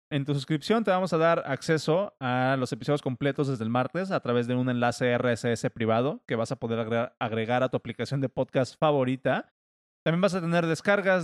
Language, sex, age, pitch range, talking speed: Spanish, male, 20-39, 115-140 Hz, 205 wpm